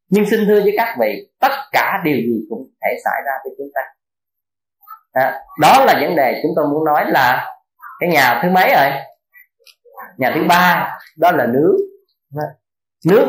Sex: male